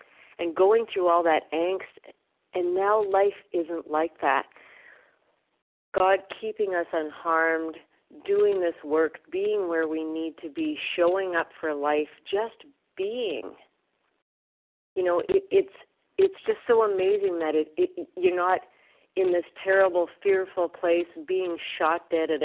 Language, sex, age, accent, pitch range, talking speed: English, female, 40-59, American, 160-195 Hz, 140 wpm